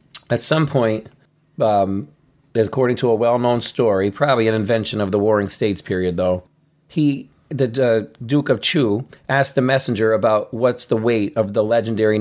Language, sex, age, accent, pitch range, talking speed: English, male, 40-59, American, 110-135 Hz, 165 wpm